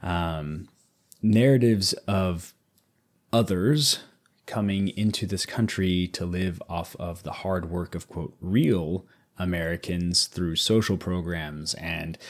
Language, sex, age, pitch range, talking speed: English, male, 30-49, 90-115 Hz, 110 wpm